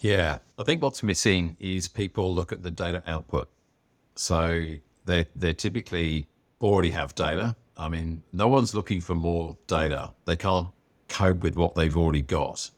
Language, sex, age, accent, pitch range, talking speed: English, male, 50-69, British, 80-95 Hz, 165 wpm